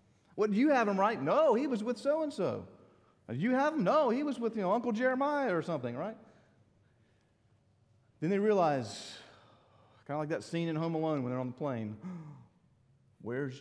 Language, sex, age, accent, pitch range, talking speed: English, male, 40-59, American, 110-150 Hz, 190 wpm